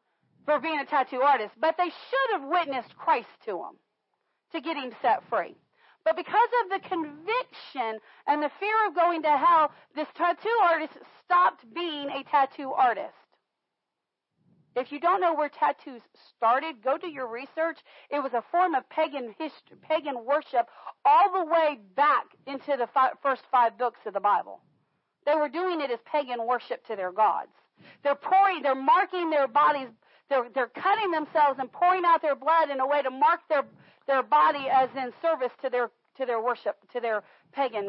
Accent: American